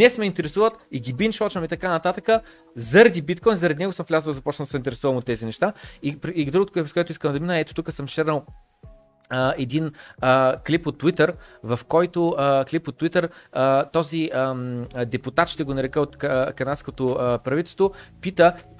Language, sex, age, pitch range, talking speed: Bulgarian, male, 30-49, 145-195 Hz, 180 wpm